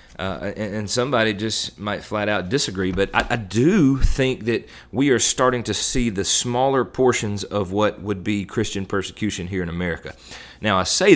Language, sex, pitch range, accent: English, male, 95-120 Hz, American